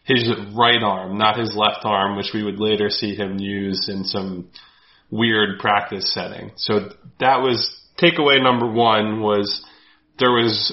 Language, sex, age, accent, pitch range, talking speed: English, male, 20-39, American, 105-120 Hz, 155 wpm